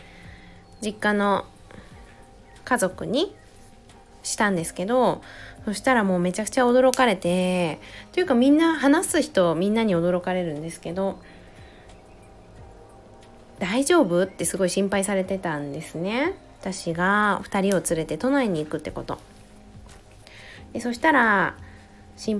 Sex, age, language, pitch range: female, 20-39, Japanese, 170-240 Hz